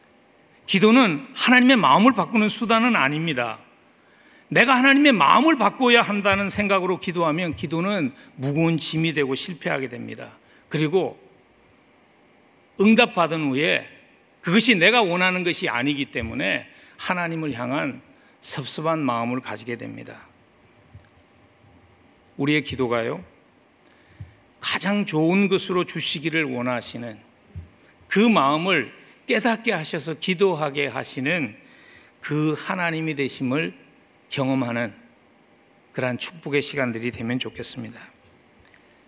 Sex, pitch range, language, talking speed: male, 130-205 Hz, English, 85 wpm